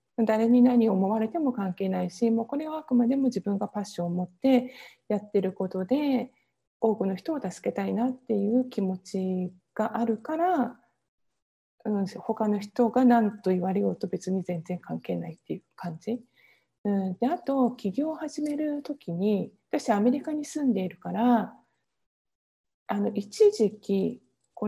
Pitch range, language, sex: 200-260 Hz, Japanese, female